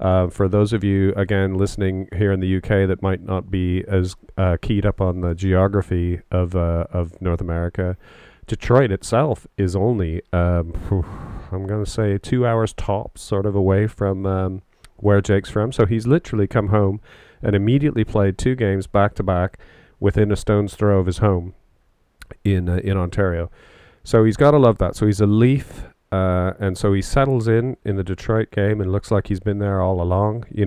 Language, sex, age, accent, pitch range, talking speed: English, male, 40-59, American, 95-110 Hz, 205 wpm